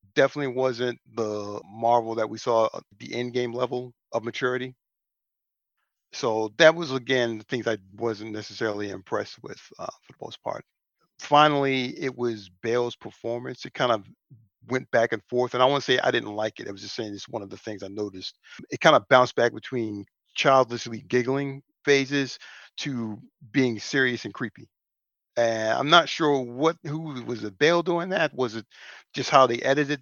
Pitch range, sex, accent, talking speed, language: 115-145 Hz, male, American, 180 wpm, English